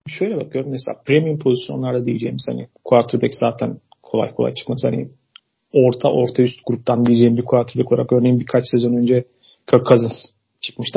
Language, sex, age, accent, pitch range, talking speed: Turkish, male, 40-59, native, 120-135 Hz, 155 wpm